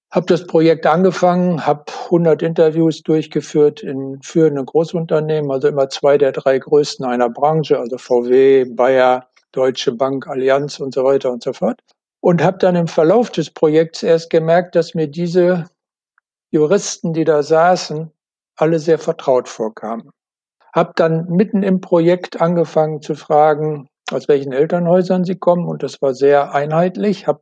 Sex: male